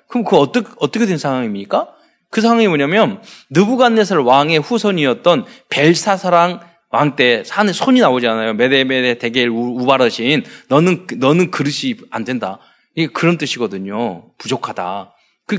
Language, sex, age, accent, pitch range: Korean, male, 20-39, native, 145-225 Hz